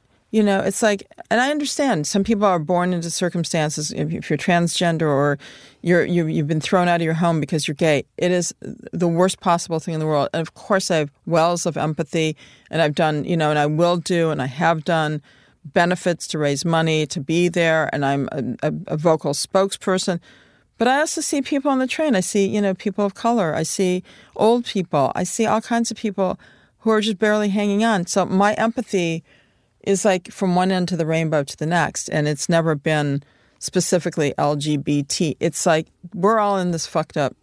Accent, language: American, English